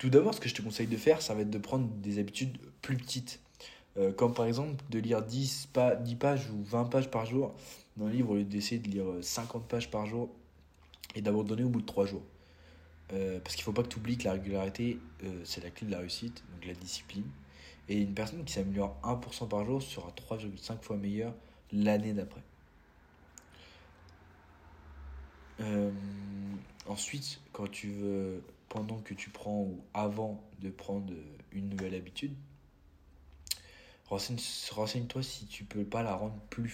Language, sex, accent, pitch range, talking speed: French, male, French, 90-115 Hz, 185 wpm